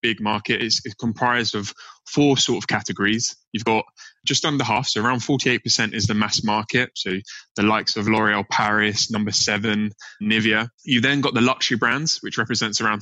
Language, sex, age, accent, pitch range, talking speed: English, male, 20-39, British, 105-125 Hz, 180 wpm